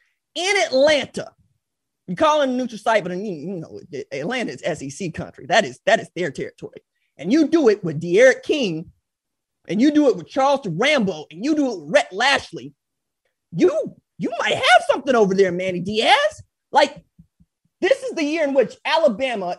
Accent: American